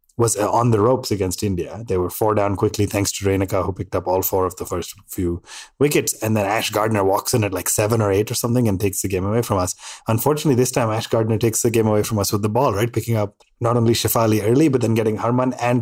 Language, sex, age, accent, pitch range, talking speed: English, male, 30-49, Indian, 100-125 Hz, 265 wpm